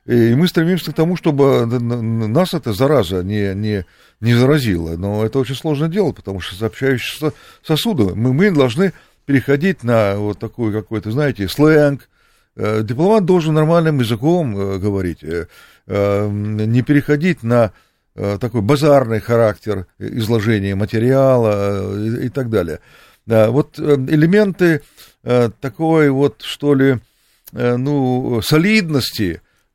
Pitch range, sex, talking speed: 110-150 Hz, male, 110 wpm